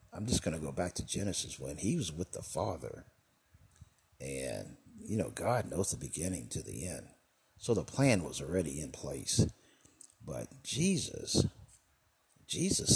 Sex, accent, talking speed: male, American, 160 wpm